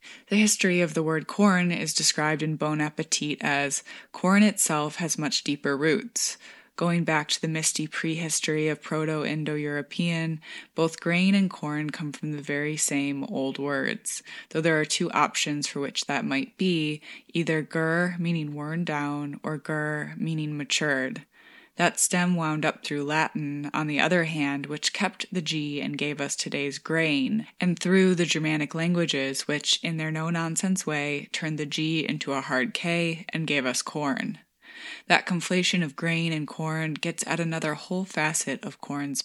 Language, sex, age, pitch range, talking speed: English, female, 20-39, 150-175 Hz, 165 wpm